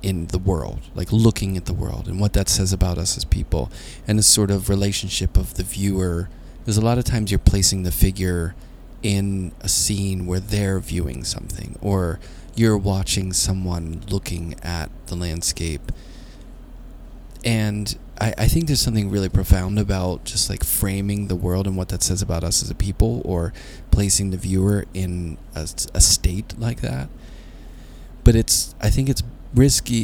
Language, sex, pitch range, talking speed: English, male, 85-105 Hz, 175 wpm